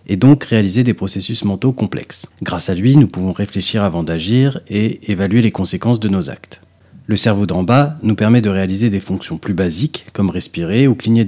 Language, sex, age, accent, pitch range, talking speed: French, male, 40-59, French, 95-120 Hz, 200 wpm